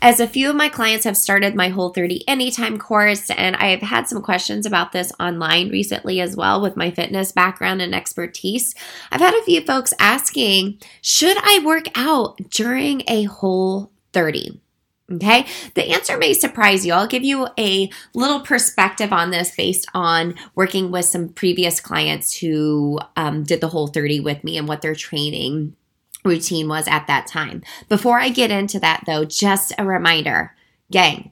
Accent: American